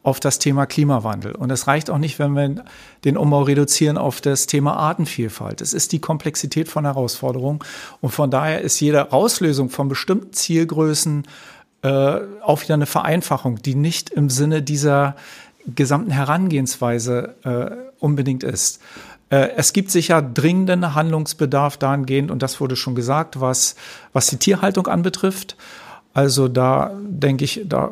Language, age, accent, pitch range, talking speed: German, 50-69, German, 135-160 Hz, 150 wpm